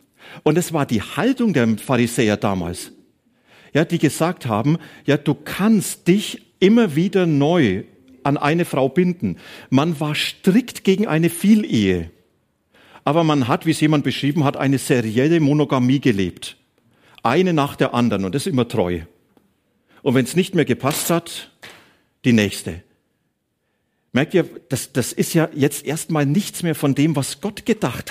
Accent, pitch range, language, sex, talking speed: German, 120-170 Hz, German, male, 160 wpm